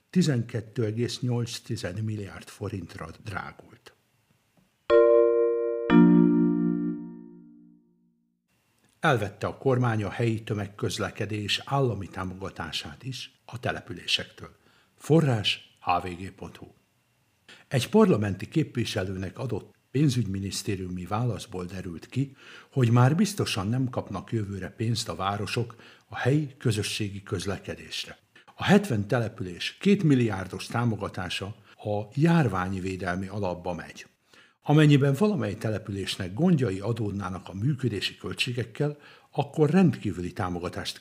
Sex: male